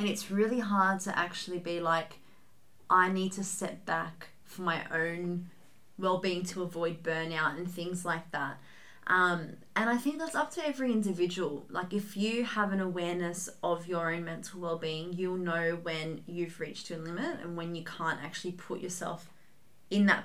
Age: 20-39